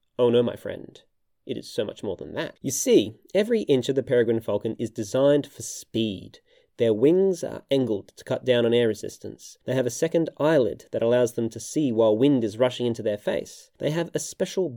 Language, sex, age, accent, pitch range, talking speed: English, male, 20-39, Australian, 120-165 Hz, 220 wpm